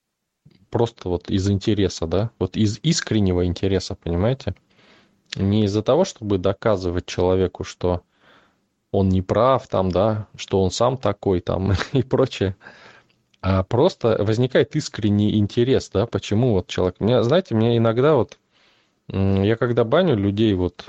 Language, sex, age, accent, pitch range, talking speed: Russian, male, 20-39, native, 95-115 Hz, 135 wpm